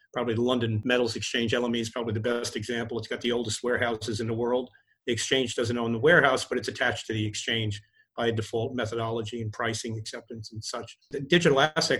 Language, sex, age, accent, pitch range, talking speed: English, male, 40-59, American, 120-140 Hz, 205 wpm